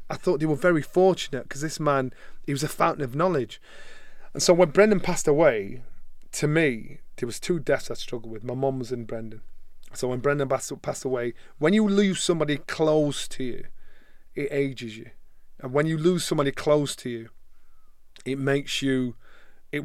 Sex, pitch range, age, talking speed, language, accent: male, 120-145 Hz, 30-49, 185 wpm, English, British